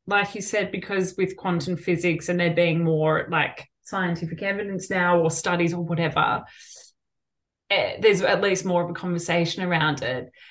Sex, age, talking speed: female, 20-39, 160 wpm